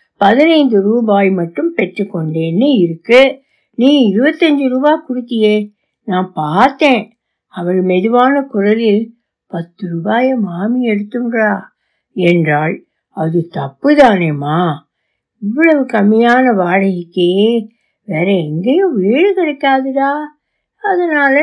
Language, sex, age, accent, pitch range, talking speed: Tamil, female, 60-79, native, 190-270 Hz, 85 wpm